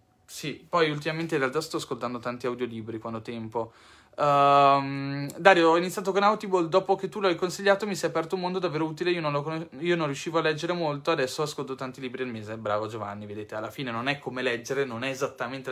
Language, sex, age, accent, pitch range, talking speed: Italian, male, 20-39, native, 135-180 Hz, 220 wpm